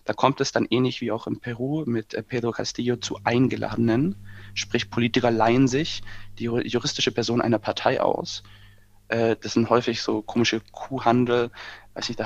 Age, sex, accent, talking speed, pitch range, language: 20-39, male, German, 150 wpm, 110-125 Hz, German